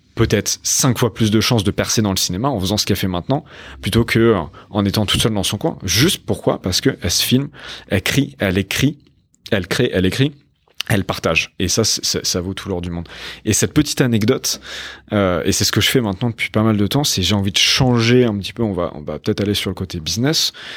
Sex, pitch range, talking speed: male, 95-115 Hz, 245 wpm